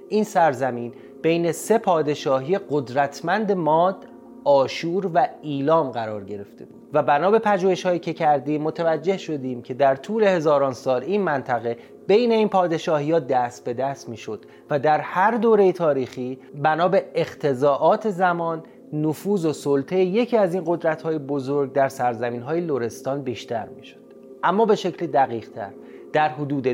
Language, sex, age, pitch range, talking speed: Persian, male, 30-49, 130-185 Hz, 140 wpm